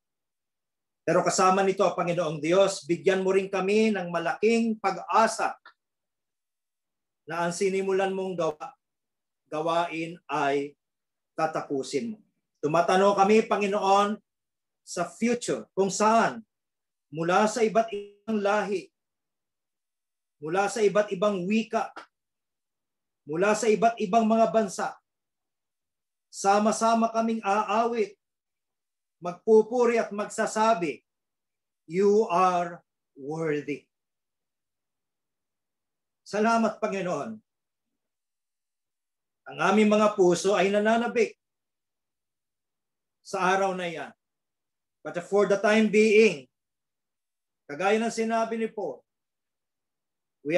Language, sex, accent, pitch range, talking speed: Filipino, male, native, 175-220 Hz, 90 wpm